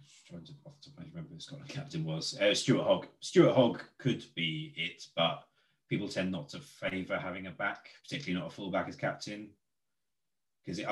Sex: male